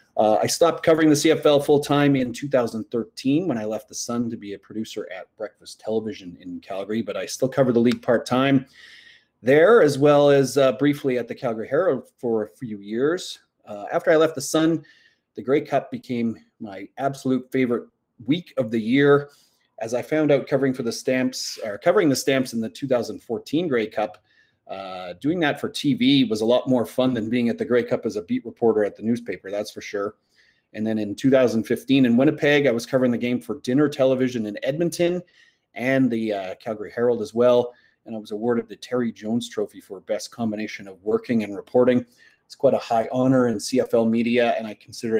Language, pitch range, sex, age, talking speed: English, 115-140 Hz, male, 30-49, 205 wpm